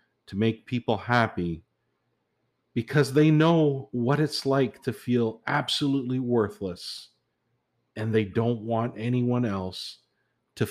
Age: 50-69